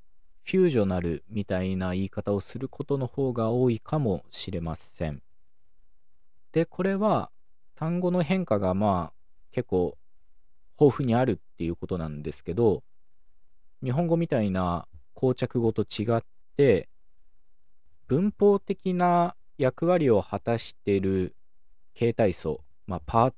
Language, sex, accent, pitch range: Japanese, male, native, 85-125 Hz